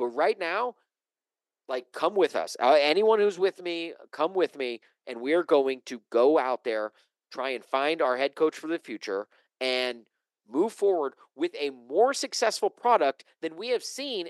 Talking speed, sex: 185 wpm, male